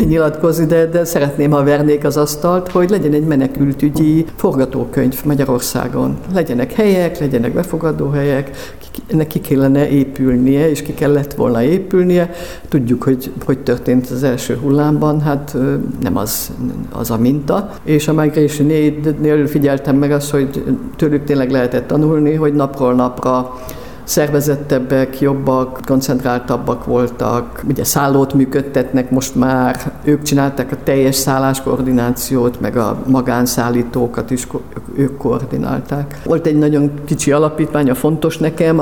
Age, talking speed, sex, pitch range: 60-79, 125 wpm, female, 130-155 Hz